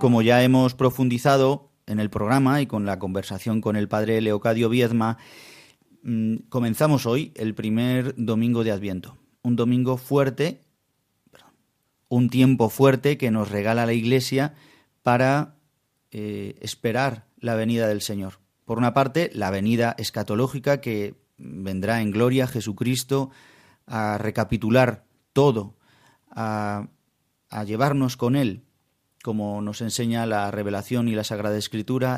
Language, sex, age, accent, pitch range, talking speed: Spanish, male, 30-49, Spanish, 110-130 Hz, 130 wpm